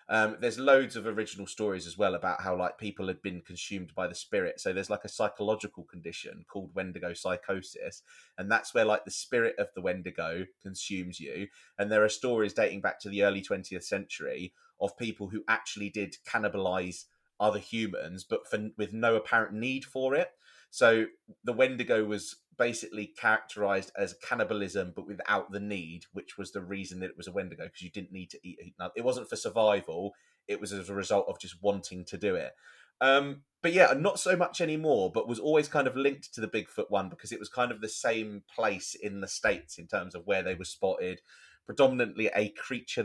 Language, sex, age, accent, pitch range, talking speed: English, male, 30-49, British, 100-130 Hz, 205 wpm